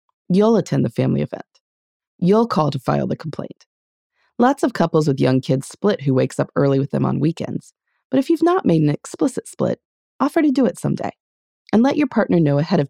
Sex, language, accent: female, English, American